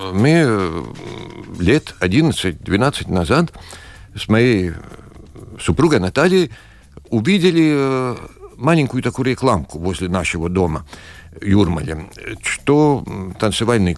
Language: Russian